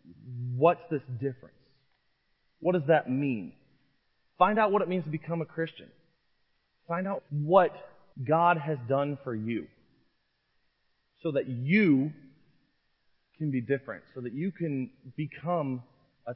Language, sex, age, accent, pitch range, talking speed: English, male, 30-49, American, 125-160 Hz, 130 wpm